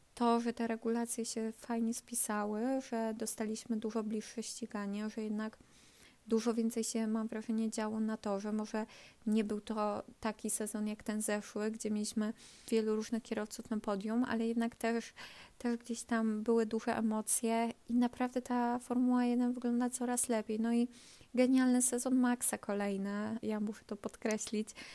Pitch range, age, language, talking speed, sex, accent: 215-240 Hz, 20-39, Polish, 160 wpm, female, native